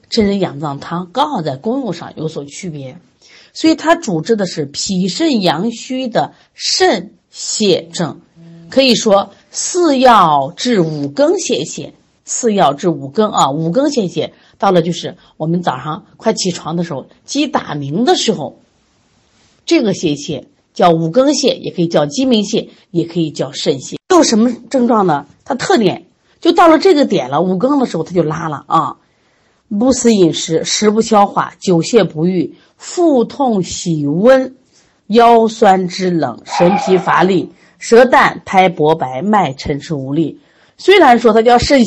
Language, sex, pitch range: Chinese, female, 165-255 Hz